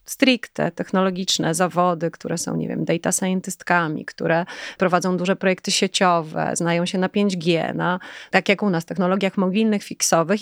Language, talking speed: Polish, 150 wpm